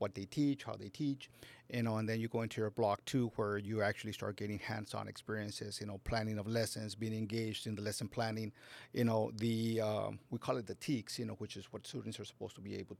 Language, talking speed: English, 250 wpm